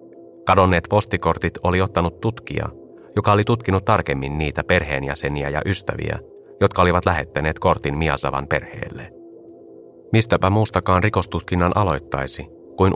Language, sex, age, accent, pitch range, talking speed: Finnish, male, 30-49, native, 70-95 Hz, 110 wpm